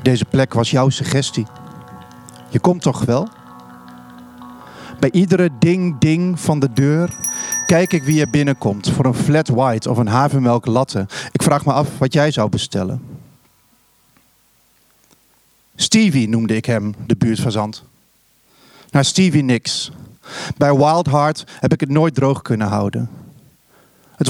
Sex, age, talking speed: male, 40-59, 140 wpm